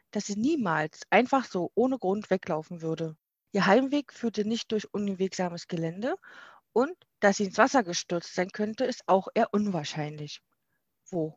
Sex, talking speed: female, 155 wpm